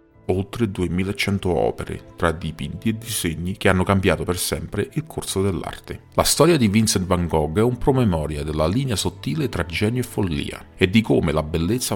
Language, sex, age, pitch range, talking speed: Italian, male, 40-59, 85-110 Hz, 180 wpm